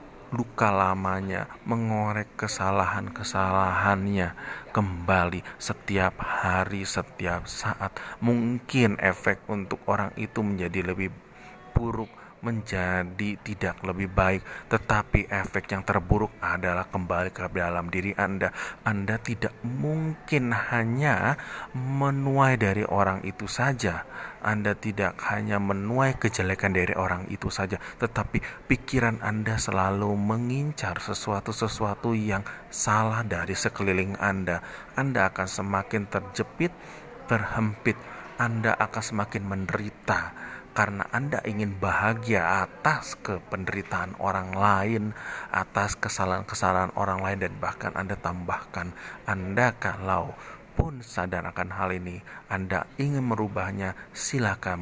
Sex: male